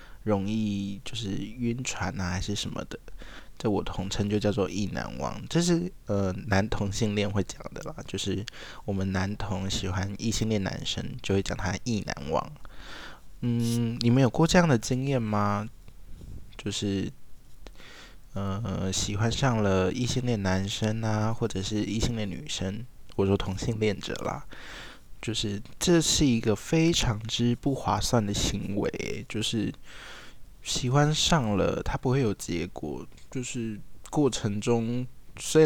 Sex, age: male, 20-39